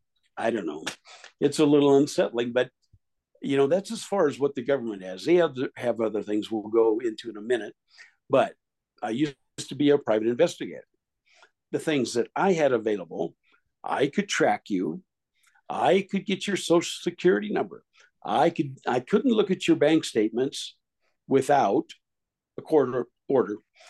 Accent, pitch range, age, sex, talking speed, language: American, 120-190 Hz, 60-79, male, 175 wpm, English